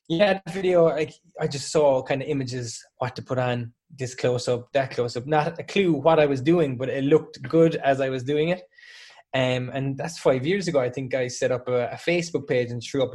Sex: male